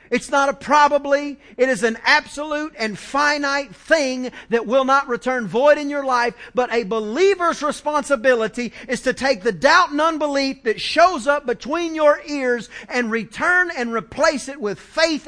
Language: English